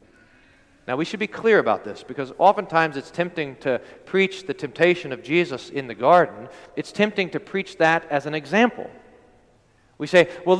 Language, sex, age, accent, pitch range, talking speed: English, male, 40-59, American, 160-205 Hz, 175 wpm